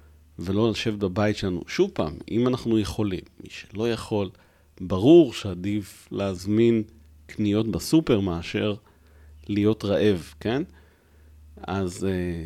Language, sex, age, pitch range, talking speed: Hebrew, male, 40-59, 90-115 Hz, 105 wpm